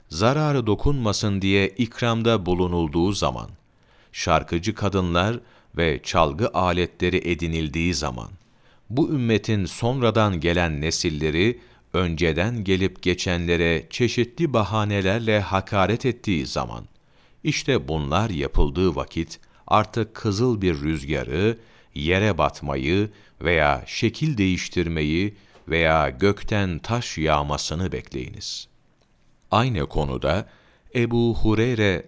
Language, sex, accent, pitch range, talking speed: Turkish, male, native, 80-115 Hz, 90 wpm